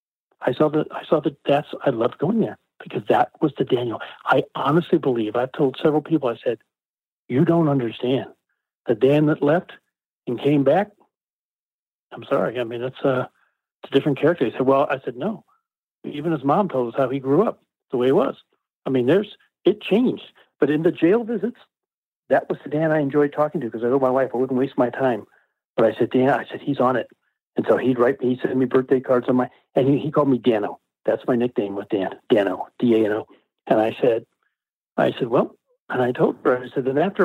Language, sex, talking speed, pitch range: English, male, 225 wpm, 120-150 Hz